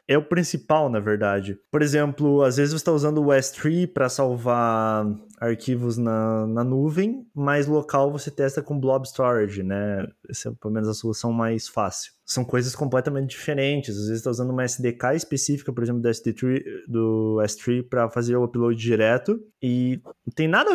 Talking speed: 180 wpm